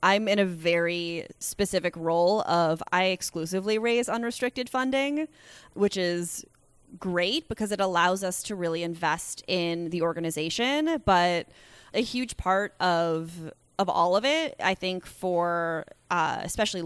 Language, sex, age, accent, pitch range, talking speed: English, female, 20-39, American, 175-215 Hz, 140 wpm